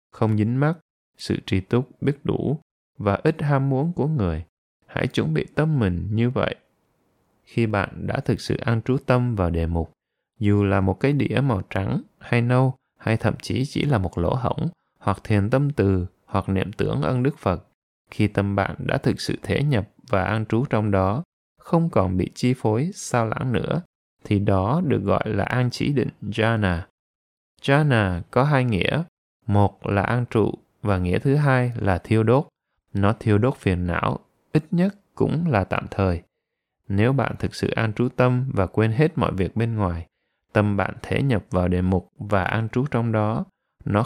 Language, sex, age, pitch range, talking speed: Vietnamese, male, 20-39, 100-130 Hz, 195 wpm